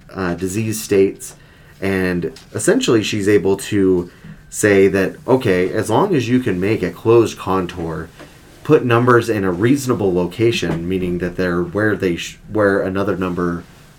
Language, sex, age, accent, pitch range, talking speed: English, male, 30-49, American, 95-120 Hz, 145 wpm